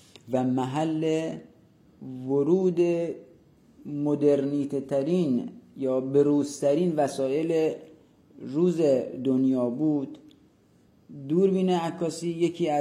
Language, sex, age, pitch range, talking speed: Persian, male, 40-59, 135-165 Hz, 65 wpm